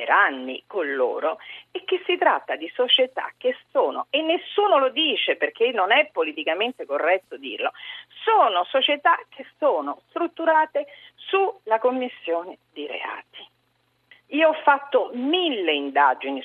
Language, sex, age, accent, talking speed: Italian, female, 40-59, native, 130 wpm